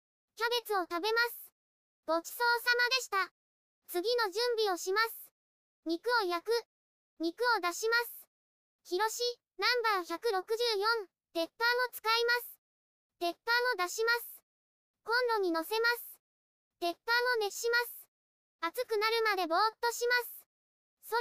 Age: 20-39